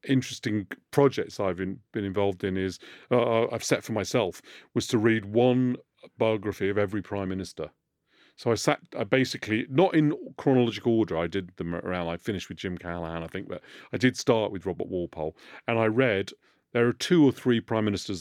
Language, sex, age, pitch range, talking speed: English, male, 40-59, 95-120 Hz, 195 wpm